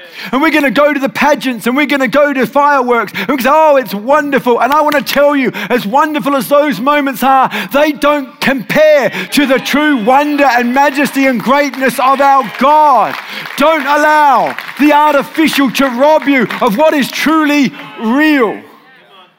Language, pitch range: English, 240-285 Hz